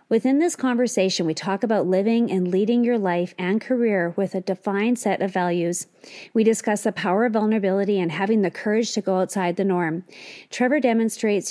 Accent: American